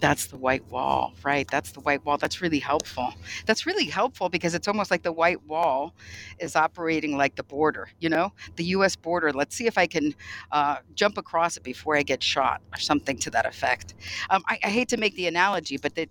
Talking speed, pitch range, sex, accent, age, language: 225 wpm, 140-175 Hz, female, American, 50-69, English